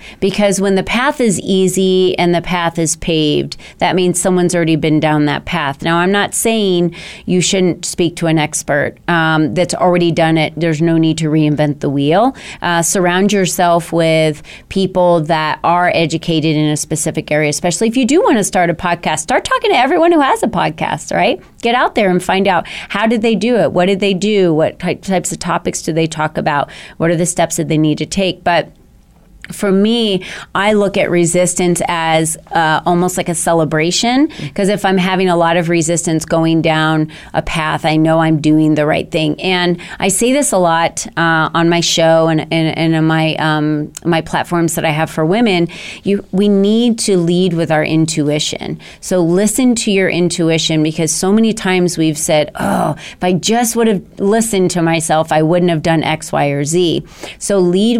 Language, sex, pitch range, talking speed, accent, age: English, female, 160-195 Hz, 205 wpm, American, 30-49